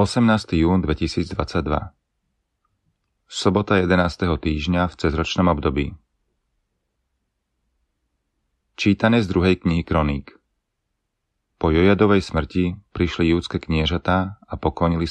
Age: 30-49